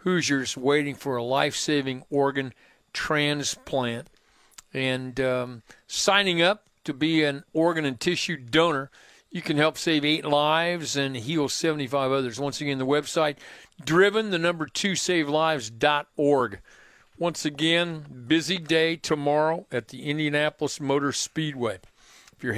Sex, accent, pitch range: male, American, 130-155 Hz